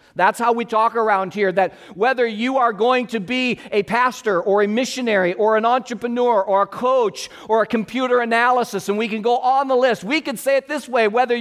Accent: American